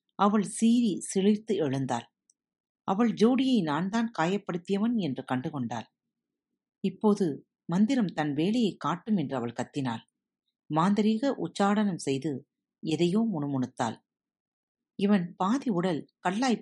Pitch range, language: 150-225 Hz, Tamil